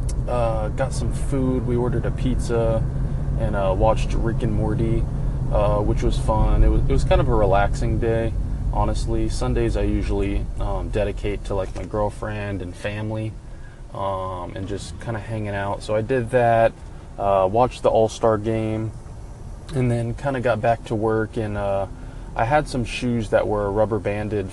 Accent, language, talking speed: American, English, 175 wpm